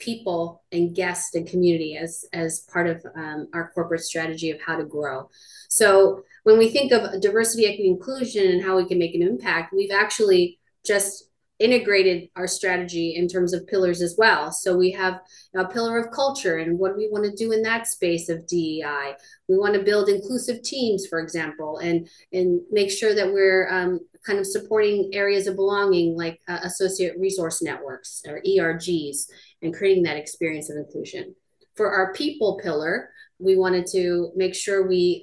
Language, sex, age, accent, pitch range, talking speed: English, female, 30-49, American, 170-195 Hz, 180 wpm